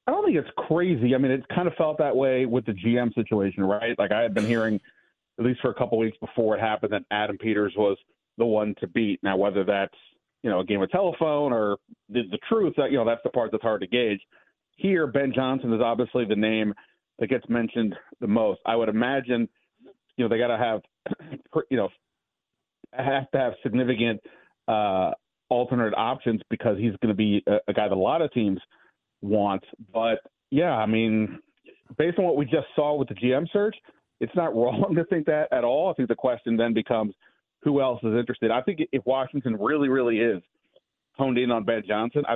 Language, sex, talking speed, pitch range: English, male, 210 wpm, 110-135 Hz